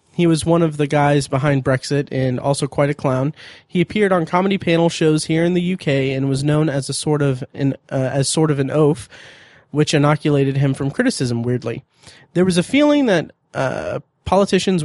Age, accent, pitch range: 20-39, American, 140-165 Hz